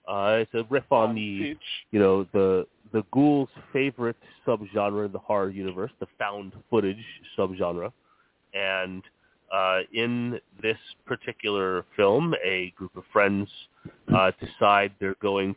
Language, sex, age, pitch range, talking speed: English, male, 30-49, 95-110 Hz, 135 wpm